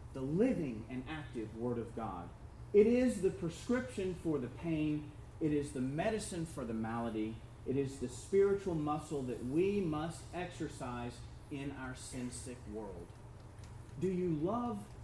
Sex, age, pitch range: male, 40-59, 120-170 Hz